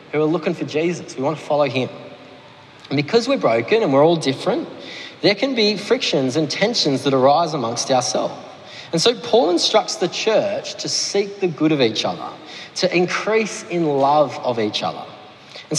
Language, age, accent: English, 30-49, Australian